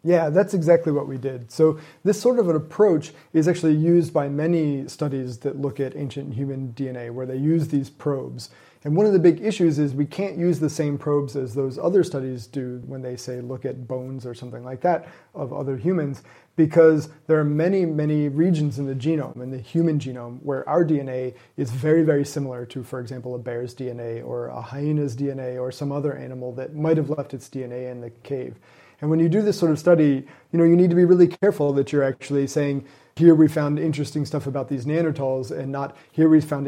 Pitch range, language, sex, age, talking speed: 130-155 Hz, English, male, 30-49, 220 wpm